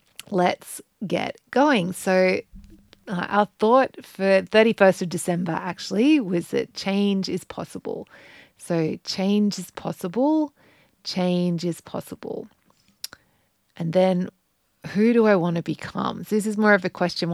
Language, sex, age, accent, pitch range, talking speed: English, female, 30-49, Australian, 175-215 Hz, 135 wpm